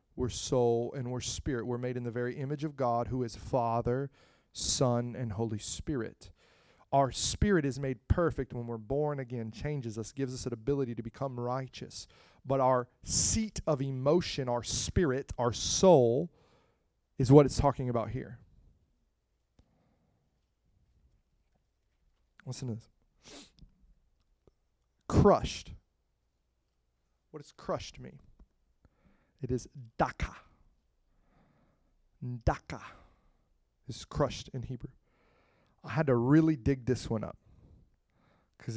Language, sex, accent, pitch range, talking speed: English, male, American, 110-135 Hz, 120 wpm